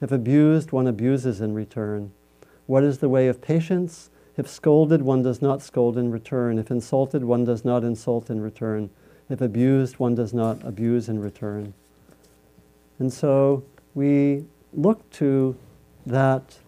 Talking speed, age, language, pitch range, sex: 150 wpm, 50-69, English, 115-150 Hz, male